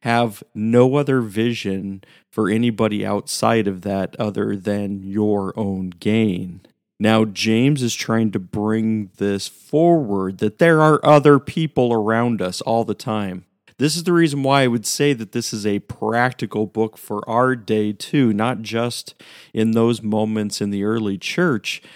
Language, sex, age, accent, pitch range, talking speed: English, male, 40-59, American, 105-135 Hz, 160 wpm